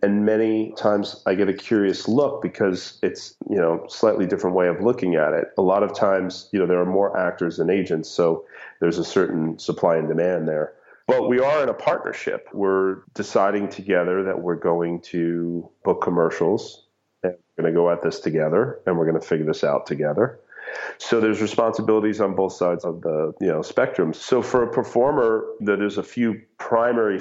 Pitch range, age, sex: 85-105 Hz, 40-59, male